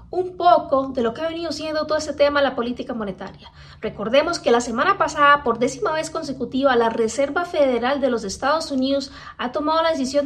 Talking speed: 200 wpm